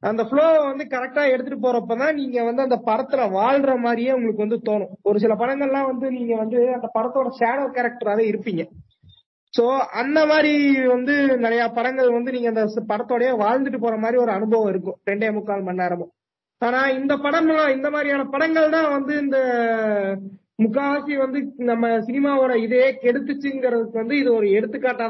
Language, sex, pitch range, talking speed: Tamil, male, 220-270 Hz, 155 wpm